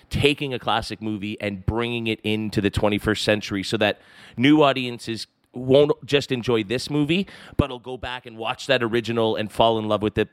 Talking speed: 200 wpm